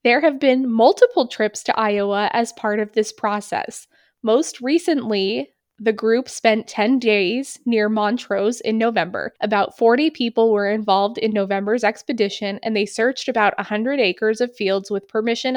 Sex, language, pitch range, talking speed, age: female, English, 210-255 Hz, 160 wpm, 20-39